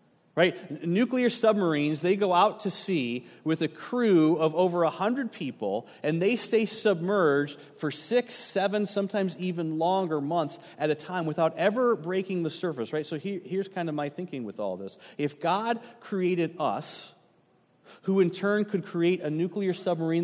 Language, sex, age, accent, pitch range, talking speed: English, male, 40-59, American, 155-195 Hz, 170 wpm